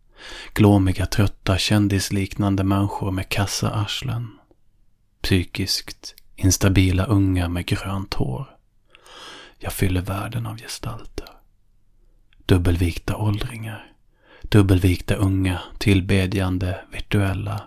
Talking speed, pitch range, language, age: 80 wpm, 95-105 Hz, Swedish, 30-49